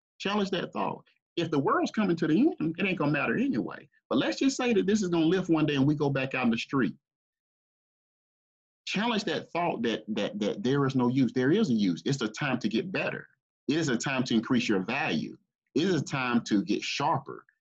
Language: English